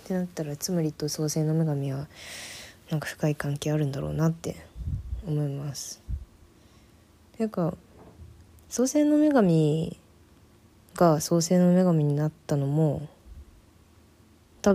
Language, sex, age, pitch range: Japanese, female, 20-39, 100-160 Hz